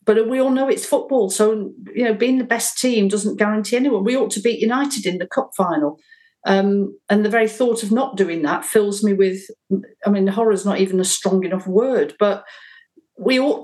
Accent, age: British, 50-69